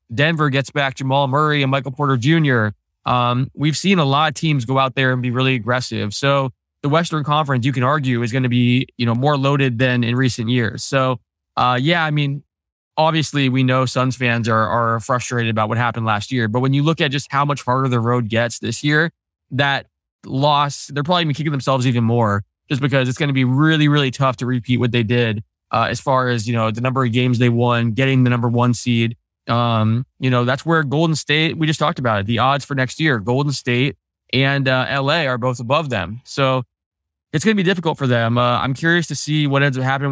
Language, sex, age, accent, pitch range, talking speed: English, male, 20-39, American, 120-145 Hz, 235 wpm